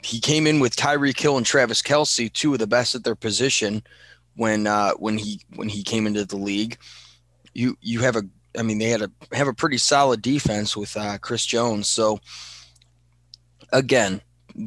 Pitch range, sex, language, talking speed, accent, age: 105-125 Hz, male, English, 190 wpm, American, 20-39